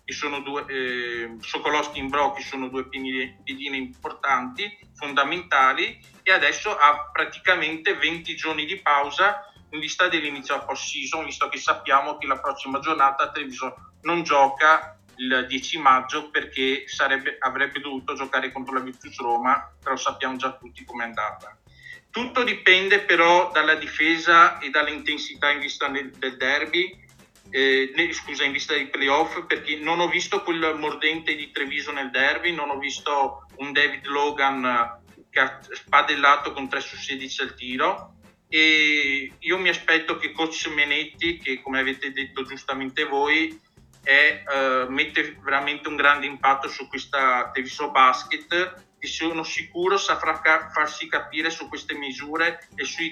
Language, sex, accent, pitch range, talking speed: Italian, male, native, 135-160 Hz, 150 wpm